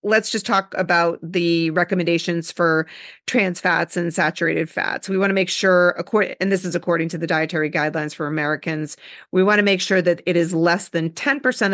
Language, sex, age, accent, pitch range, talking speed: English, female, 40-59, American, 165-205 Hz, 205 wpm